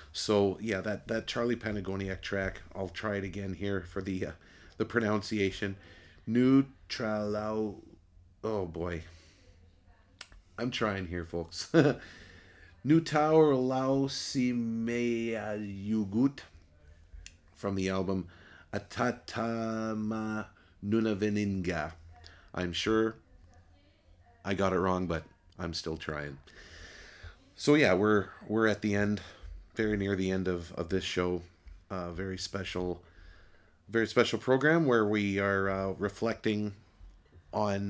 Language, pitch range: English, 85-105 Hz